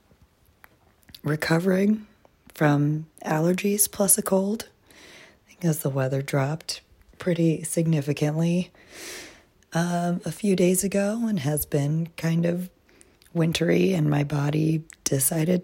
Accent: American